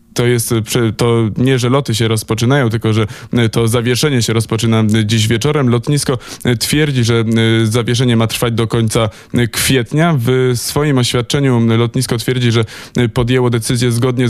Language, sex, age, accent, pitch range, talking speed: Polish, male, 20-39, native, 115-130 Hz, 145 wpm